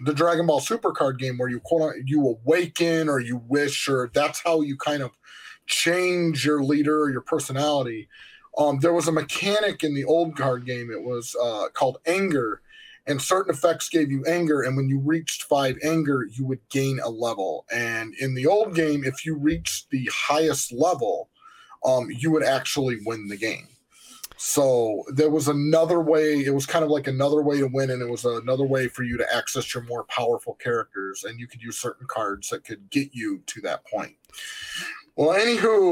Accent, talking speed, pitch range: American, 195 wpm, 125-160 Hz